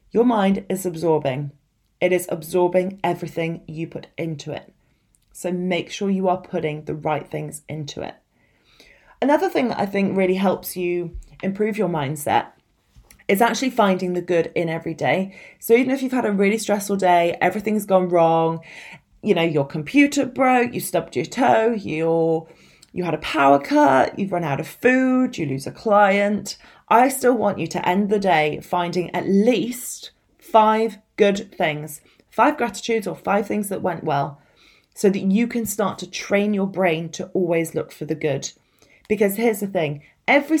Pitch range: 165-215 Hz